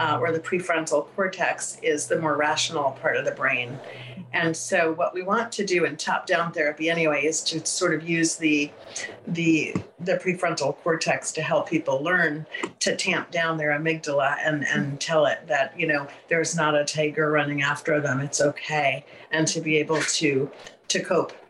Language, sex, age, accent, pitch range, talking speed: English, female, 50-69, American, 155-175 Hz, 185 wpm